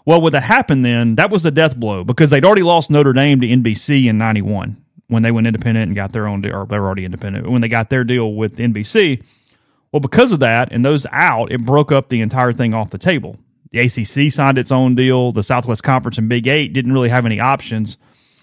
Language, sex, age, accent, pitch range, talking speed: English, male, 30-49, American, 110-135 Hz, 235 wpm